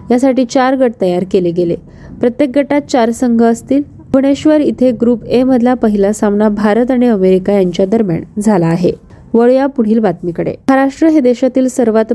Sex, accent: female, native